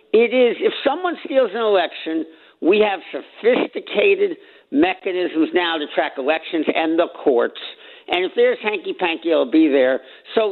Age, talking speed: 60-79, 150 wpm